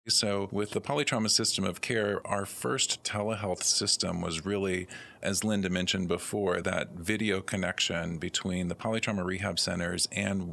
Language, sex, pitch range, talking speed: English, male, 90-105 Hz, 150 wpm